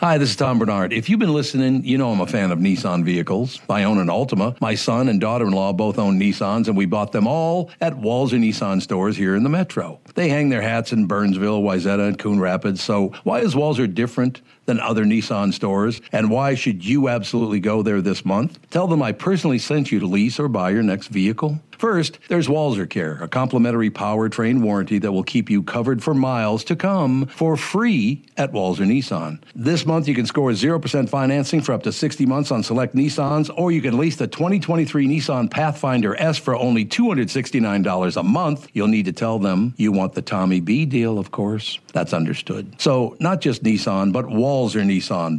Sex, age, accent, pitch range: male, 60-79, American, 105-145 Hz